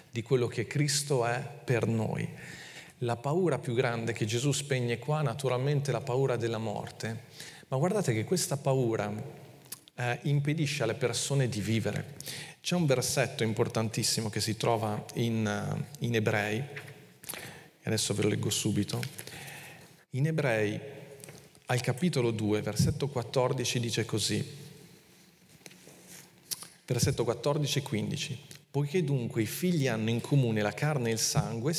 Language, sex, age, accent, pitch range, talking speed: Italian, male, 40-59, native, 115-155 Hz, 135 wpm